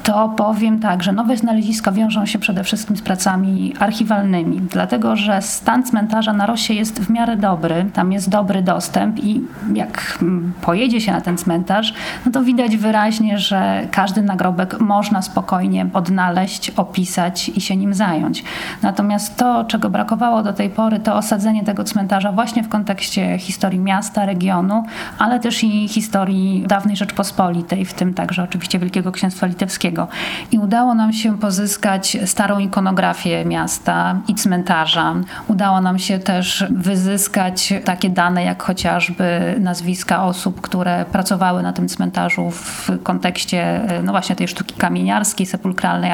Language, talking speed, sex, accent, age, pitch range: Polish, 145 wpm, female, native, 40-59, 185-210 Hz